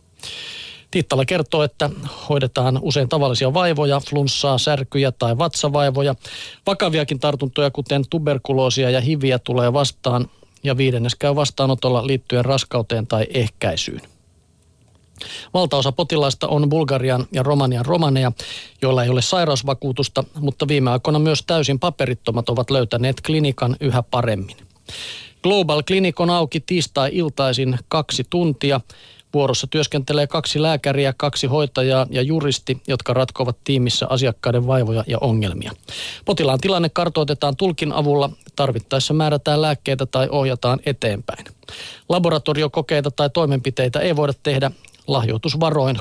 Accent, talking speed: native, 115 wpm